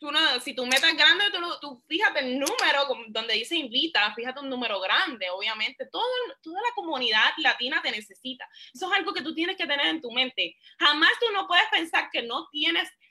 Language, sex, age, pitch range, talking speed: Spanish, female, 20-39, 235-325 Hz, 225 wpm